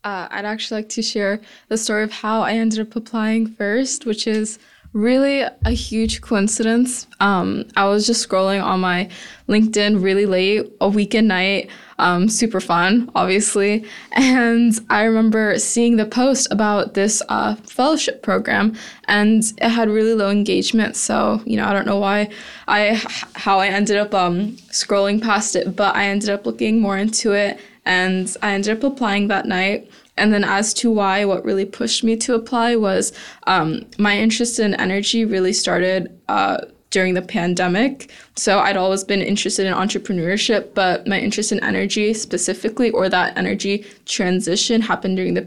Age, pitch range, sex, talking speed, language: 10-29, 195-225 Hz, female, 170 wpm, English